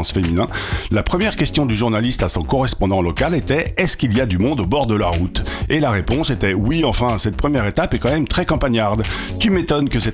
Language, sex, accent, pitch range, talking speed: French, male, French, 95-130 Hz, 255 wpm